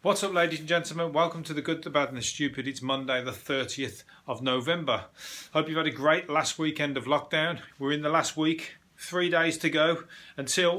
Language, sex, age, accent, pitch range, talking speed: English, male, 30-49, British, 135-160 Hz, 215 wpm